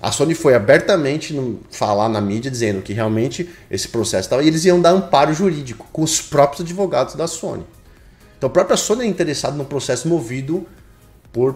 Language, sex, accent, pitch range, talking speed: Portuguese, male, Brazilian, 110-155 Hz, 180 wpm